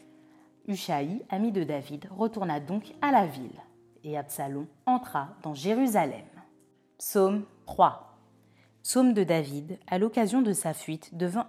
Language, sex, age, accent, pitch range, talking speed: French, female, 30-49, French, 175-255 Hz, 130 wpm